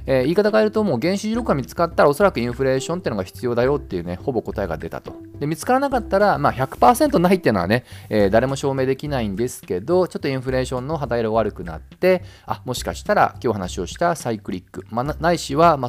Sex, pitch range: male, 105-160 Hz